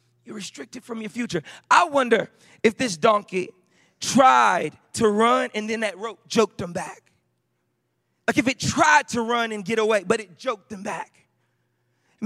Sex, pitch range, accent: male, 185-240 Hz, American